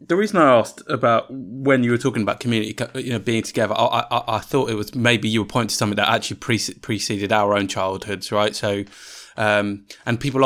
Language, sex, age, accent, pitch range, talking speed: English, male, 20-39, British, 105-120 Hz, 220 wpm